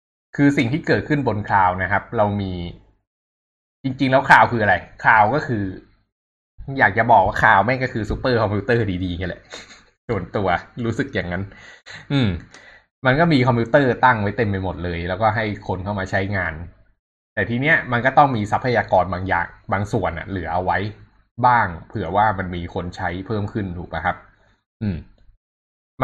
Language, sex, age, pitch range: Thai, male, 20-39, 95-120 Hz